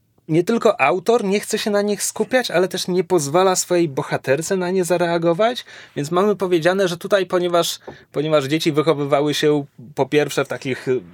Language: Polish